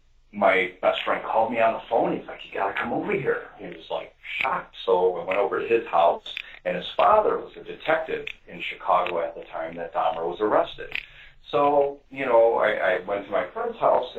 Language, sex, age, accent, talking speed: English, male, 40-59, American, 220 wpm